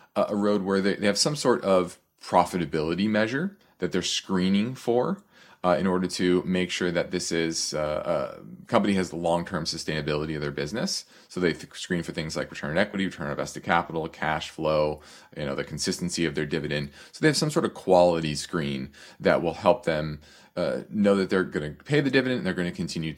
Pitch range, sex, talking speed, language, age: 80-105 Hz, male, 210 wpm, English, 30-49